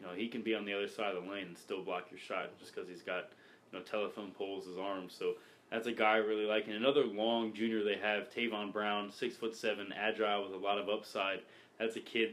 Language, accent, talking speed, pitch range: English, American, 265 wpm, 100-115 Hz